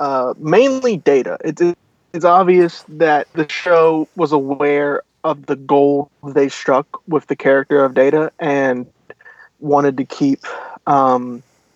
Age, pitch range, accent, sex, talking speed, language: 20-39, 140-160 Hz, American, male, 135 wpm, English